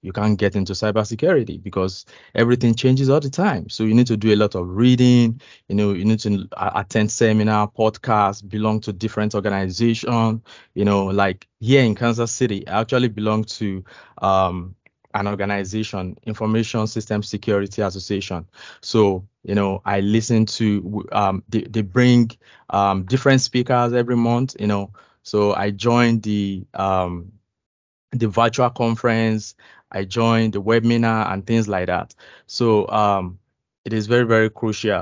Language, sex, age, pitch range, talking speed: English, male, 20-39, 100-115 Hz, 155 wpm